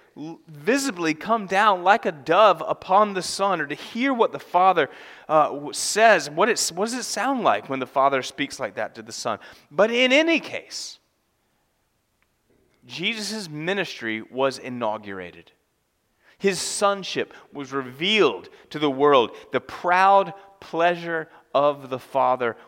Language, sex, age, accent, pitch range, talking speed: English, male, 30-49, American, 125-185 Hz, 140 wpm